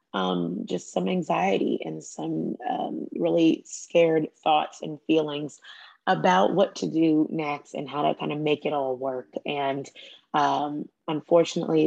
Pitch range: 150-175 Hz